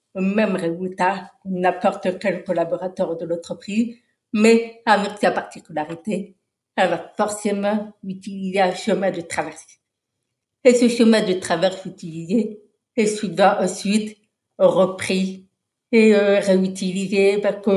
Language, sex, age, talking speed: French, female, 60-79, 110 wpm